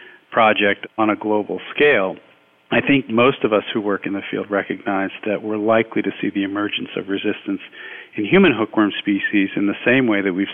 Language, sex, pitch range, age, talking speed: English, male, 95-110 Hz, 50-69, 200 wpm